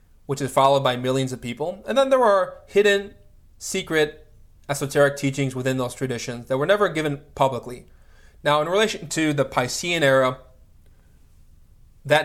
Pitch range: 120-145 Hz